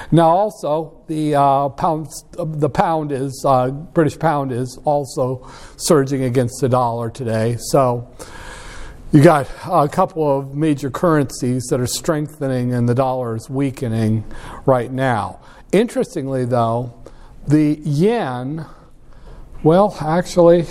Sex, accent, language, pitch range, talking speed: male, American, English, 130-165 Hz, 120 wpm